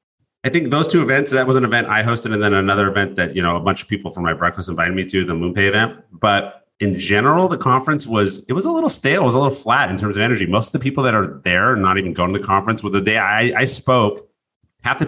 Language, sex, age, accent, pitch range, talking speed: English, male, 30-49, American, 95-130 Hz, 290 wpm